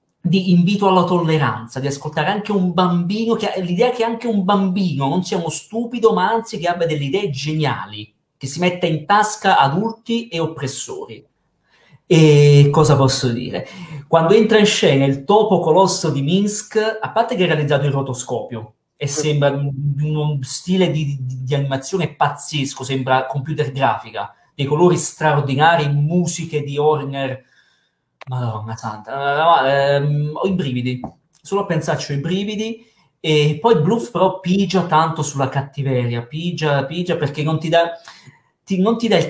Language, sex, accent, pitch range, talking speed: Italian, male, native, 135-185 Hz, 160 wpm